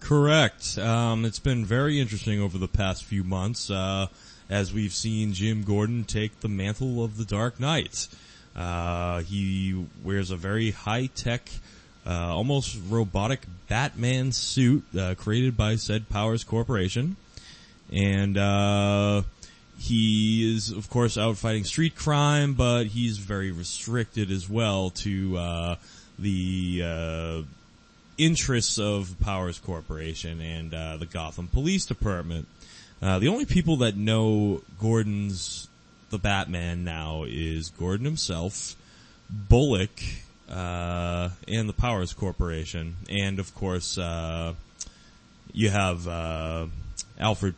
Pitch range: 90-115 Hz